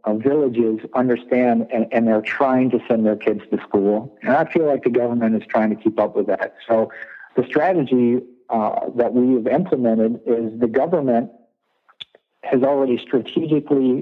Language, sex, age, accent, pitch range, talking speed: English, male, 50-69, American, 110-125 Hz, 165 wpm